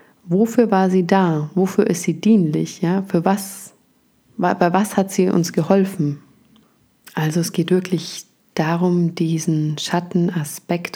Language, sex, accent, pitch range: German, female, German, 160-200 Hz